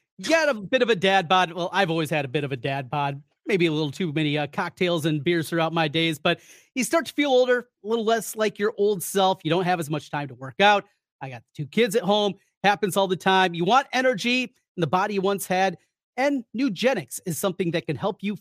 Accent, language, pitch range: American, English, 160-225 Hz